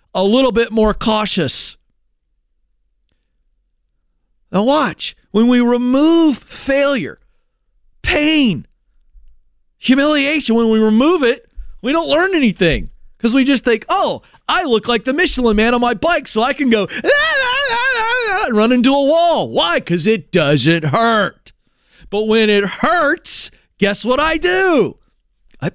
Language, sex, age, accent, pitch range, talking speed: English, male, 40-59, American, 200-275 Hz, 140 wpm